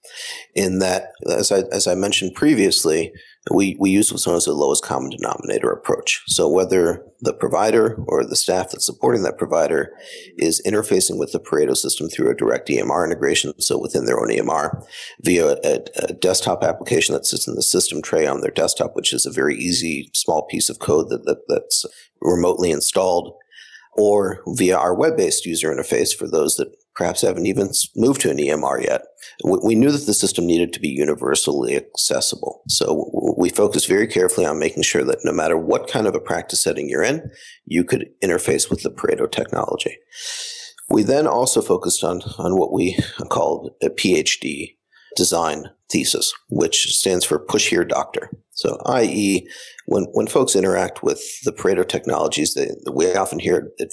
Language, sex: English, male